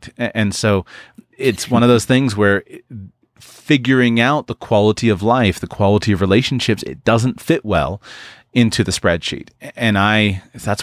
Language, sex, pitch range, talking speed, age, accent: English, male, 100-125 Hz, 155 wpm, 30-49, American